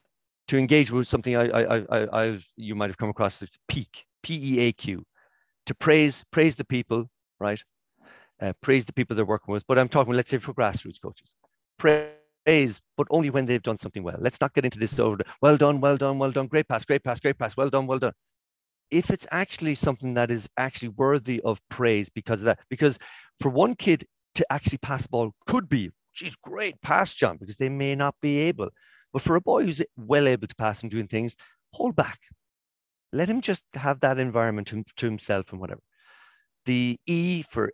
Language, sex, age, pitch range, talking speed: English, male, 50-69, 110-145 Hz, 210 wpm